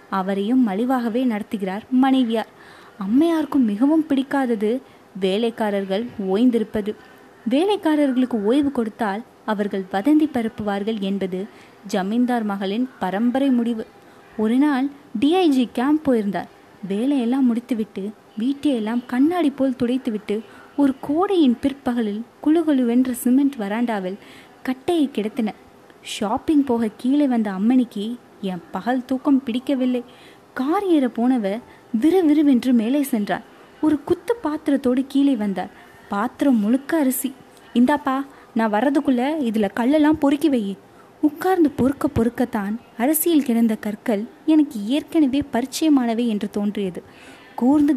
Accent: native